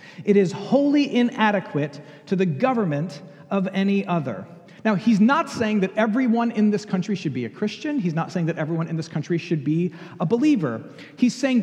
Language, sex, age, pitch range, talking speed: English, male, 40-59, 180-230 Hz, 190 wpm